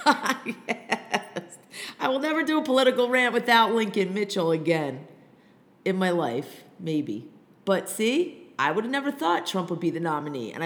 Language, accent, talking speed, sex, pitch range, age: English, American, 165 wpm, female, 180-245 Hz, 40-59